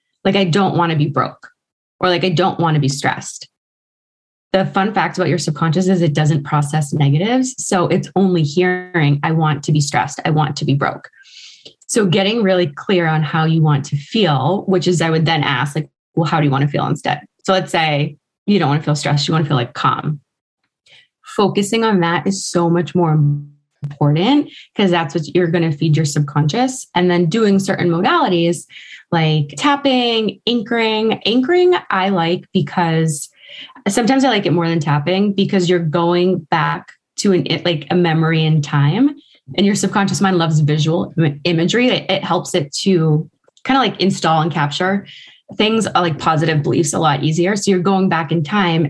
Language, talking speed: English, 195 wpm